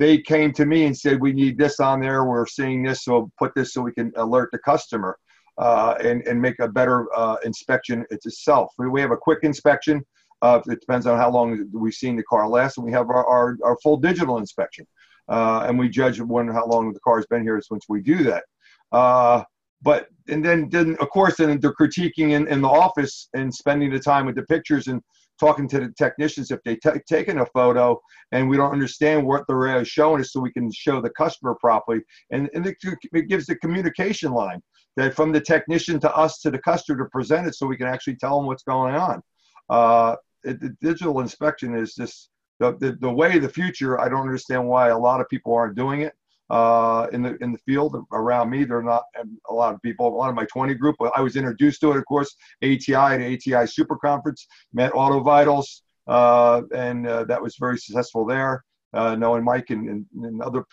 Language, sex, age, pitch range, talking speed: English, male, 40-59, 120-145 Hz, 220 wpm